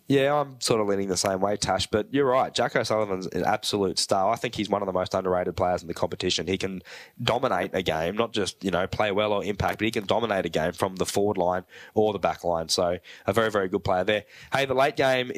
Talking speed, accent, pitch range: 260 wpm, Australian, 105-120 Hz